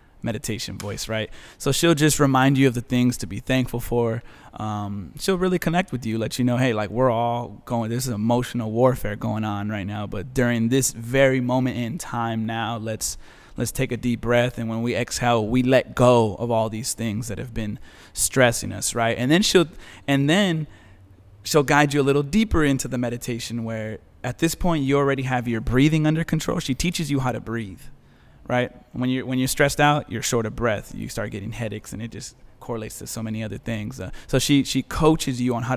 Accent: American